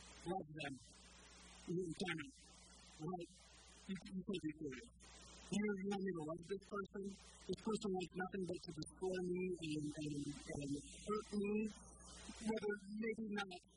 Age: 50-69